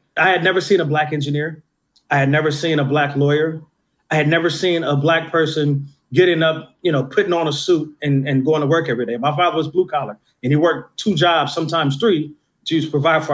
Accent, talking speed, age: American, 235 wpm, 30-49